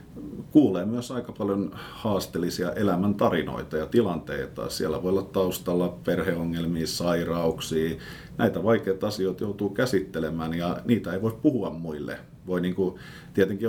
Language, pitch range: Finnish, 85-105 Hz